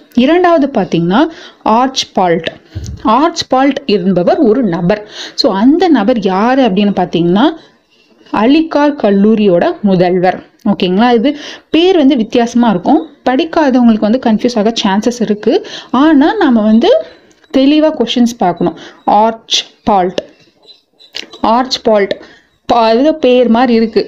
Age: 30-49